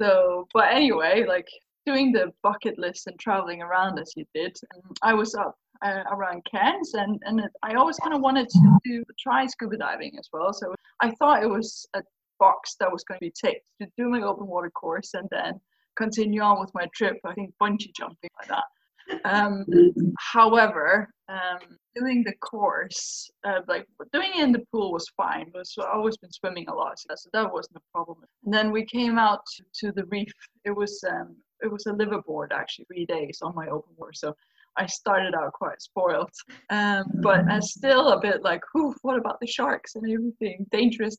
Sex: female